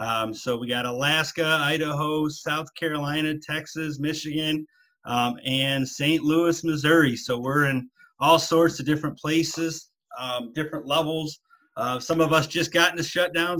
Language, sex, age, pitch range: English, male, 30-49, 135-165 Hz